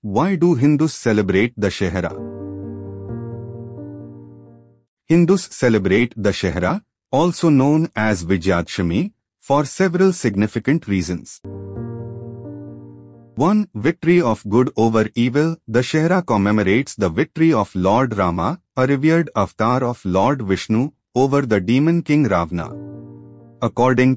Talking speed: 110 wpm